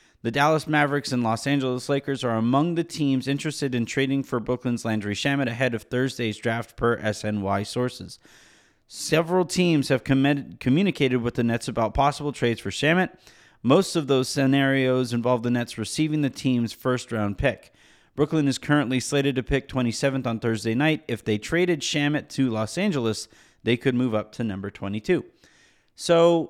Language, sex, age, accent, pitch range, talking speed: English, male, 30-49, American, 120-150 Hz, 170 wpm